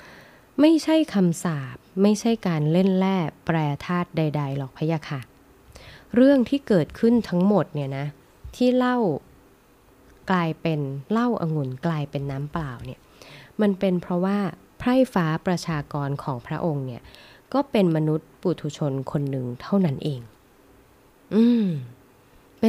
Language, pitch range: Thai, 145-200 Hz